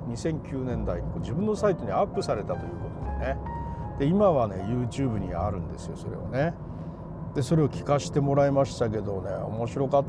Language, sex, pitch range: Japanese, male, 115-165 Hz